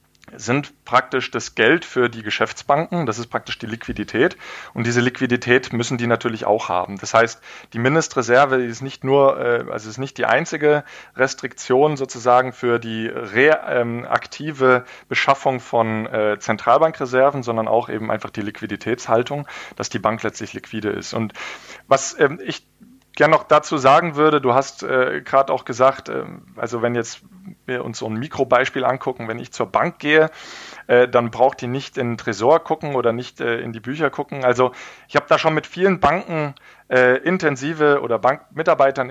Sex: male